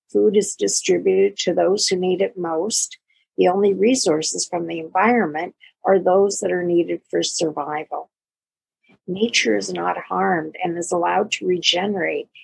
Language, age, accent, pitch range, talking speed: English, 50-69, American, 170-215 Hz, 150 wpm